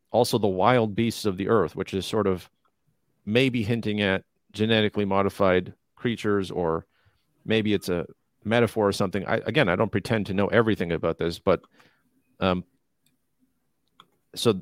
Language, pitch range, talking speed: English, 100-120 Hz, 150 wpm